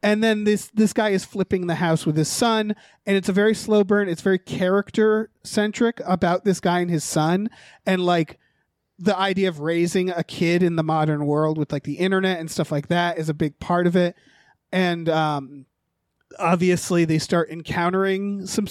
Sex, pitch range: male, 170-210 Hz